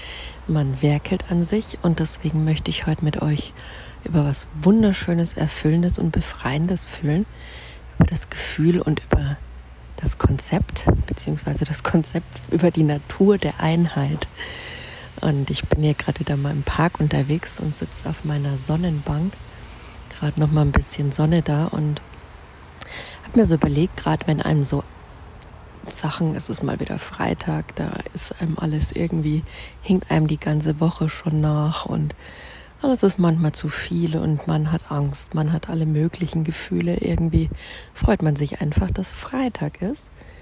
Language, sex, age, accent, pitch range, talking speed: German, female, 30-49, German, 145-170 Hz, 155 wpm